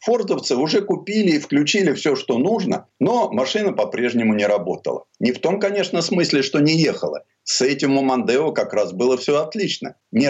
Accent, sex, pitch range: native, male, 125-200 Hz